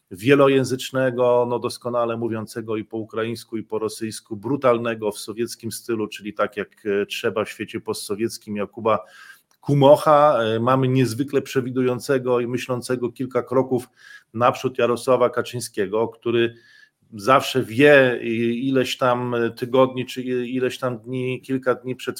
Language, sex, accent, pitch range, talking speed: Polish, male, native, 120-135 Hz, 120 wpm